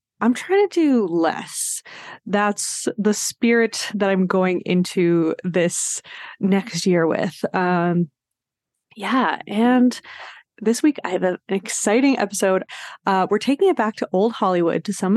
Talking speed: 140 wpm